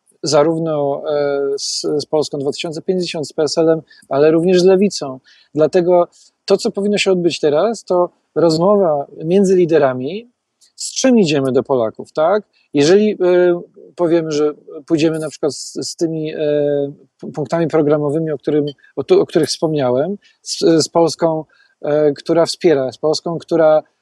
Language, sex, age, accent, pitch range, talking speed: Polish, male, 40-59, native, 150-185 Hz, 135 wpm